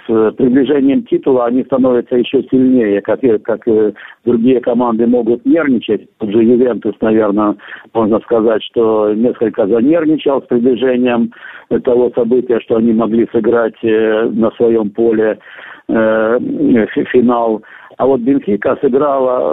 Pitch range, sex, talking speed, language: 115-130 Hz, male, 125 wpm, Russian